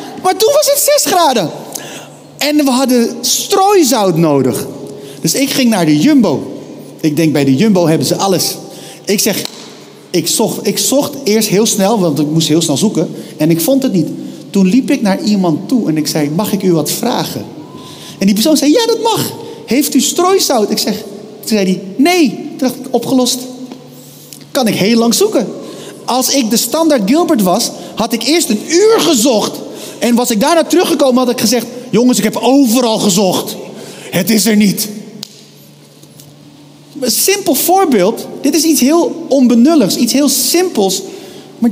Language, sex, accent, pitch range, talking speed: Dutch, male, Dutch, 195-265 Hz, 180 wpm